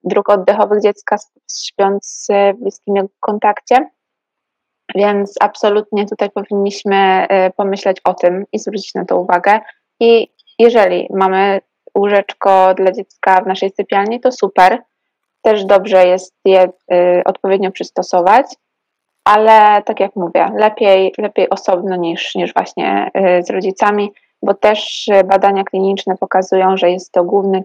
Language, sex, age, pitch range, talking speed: Polish, female, 20-39, 185-210 Hz, 125 wpm